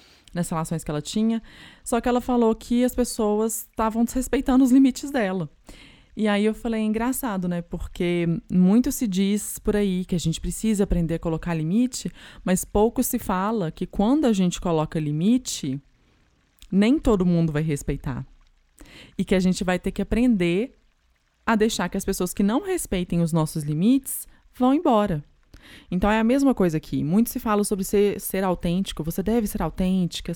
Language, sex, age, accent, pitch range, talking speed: Portuguese, female, 20-39, Brazilian, 165-225 Hz, 180 wpm